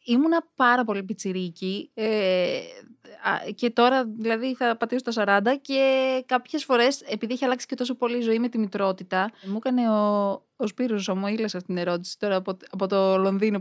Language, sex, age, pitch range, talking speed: Greek, female, 20-39, 200-265 Hz, 180 wpm